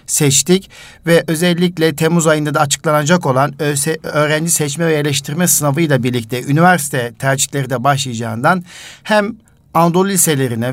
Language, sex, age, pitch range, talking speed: Turkish, male, 50-69, 140-170 Hz, 125 wpm